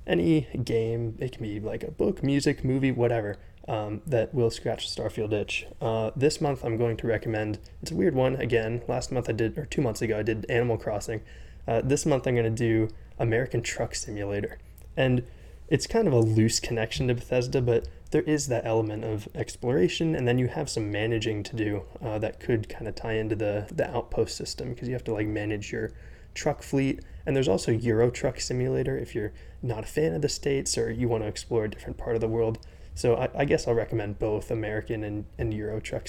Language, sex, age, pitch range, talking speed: English, male, 20-39, 110-120 Hz, 220 wpm